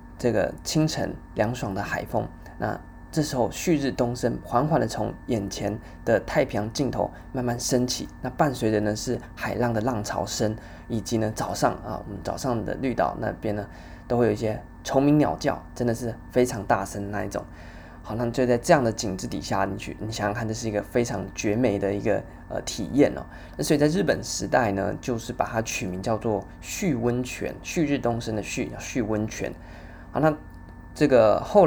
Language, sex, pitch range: Chinese, male, 105-130 Hz